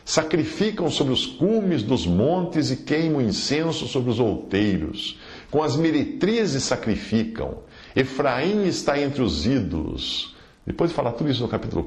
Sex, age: male, 50-69